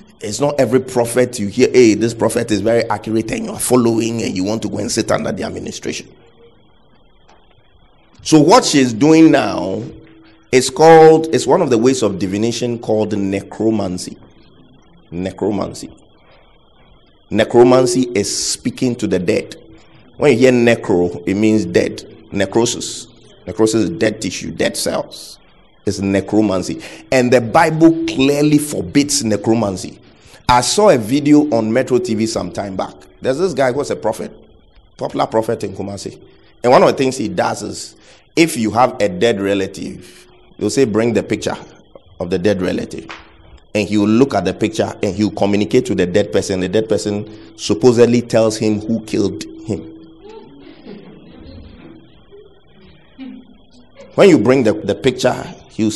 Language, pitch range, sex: English, 105-130 Hz, male